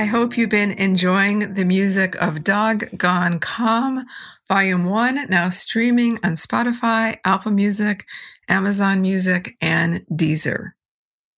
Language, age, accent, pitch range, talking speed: English, 50-69, American, 180-215 Hz, 120 wpm